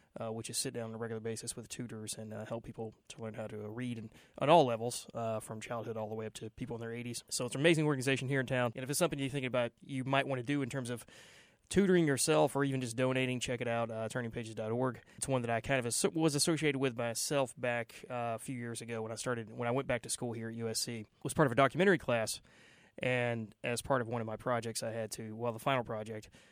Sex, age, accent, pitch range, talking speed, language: male, 20-39, American, 115-135 Hz, 275 wpm, English